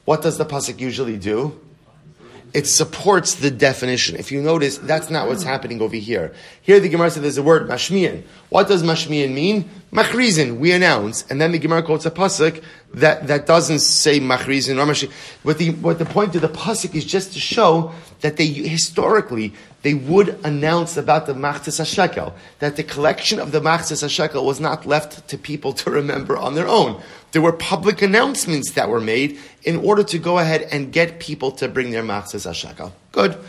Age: 30-49